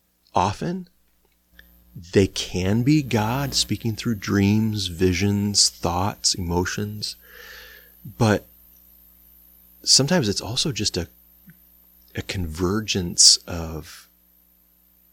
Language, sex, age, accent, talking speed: English, male, 30-49, American, 80 wpm